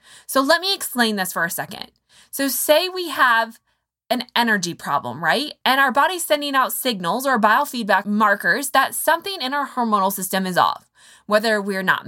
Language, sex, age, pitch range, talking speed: English, female, 20-39, 210-295 Hz, 180 wpm